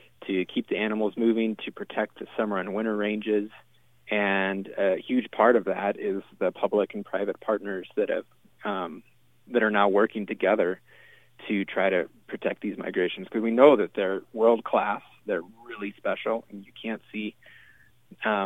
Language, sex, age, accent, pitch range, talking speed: English, male, 30-49, American, 100-115 Hz, 165 wpm